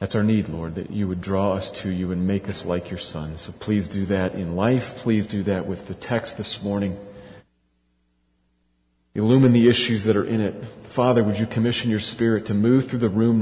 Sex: male